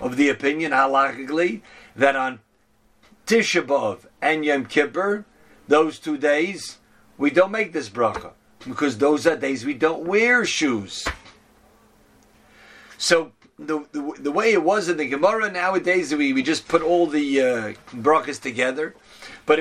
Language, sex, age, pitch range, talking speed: English, male, 50-69, 140-185 Hz, 145 wpm